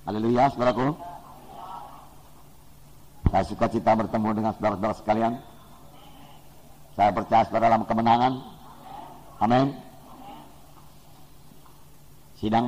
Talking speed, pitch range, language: 70 wpm, 105-125 Hz, English